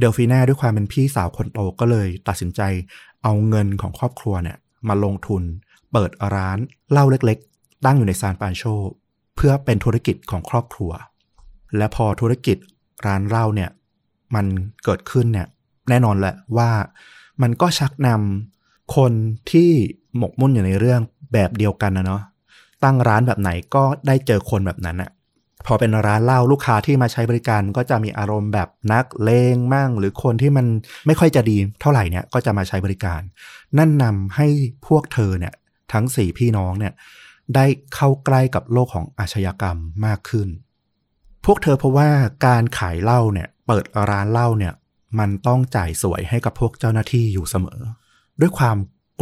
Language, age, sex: Thai, 20-39, male